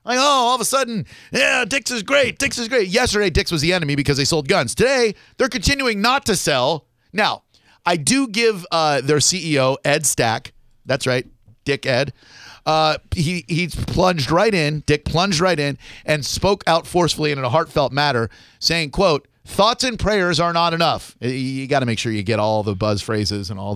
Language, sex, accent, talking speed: English, male, American, 205 wpm